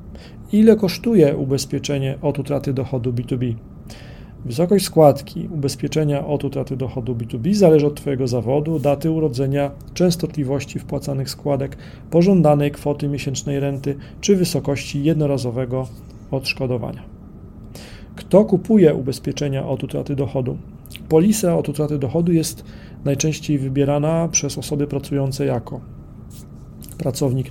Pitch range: 130-150 Hz